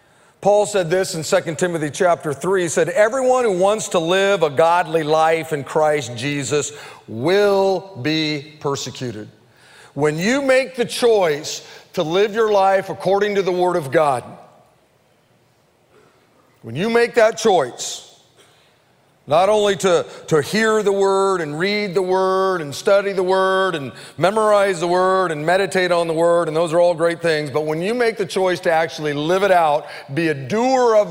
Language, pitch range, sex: English, 160-215 Hz, male